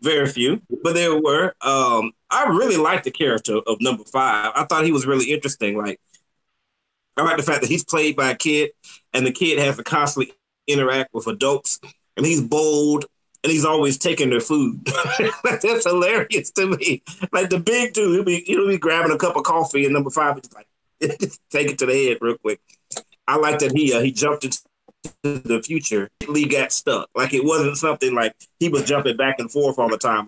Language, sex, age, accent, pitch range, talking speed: English, male, 30-49, American, 120-160 Hz, 210 wpm